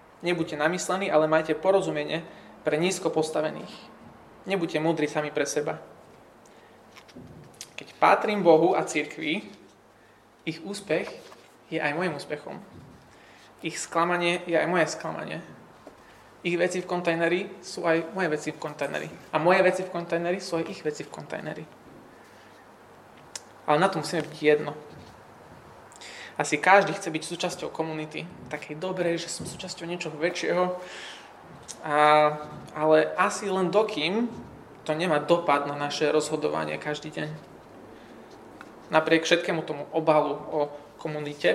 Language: Slovak